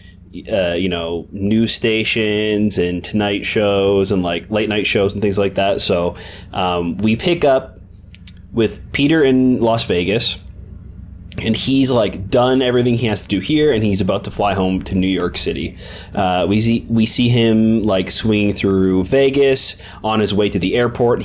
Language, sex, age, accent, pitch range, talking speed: English, male, 20-39, American, 90-115 Hz, 180 wpm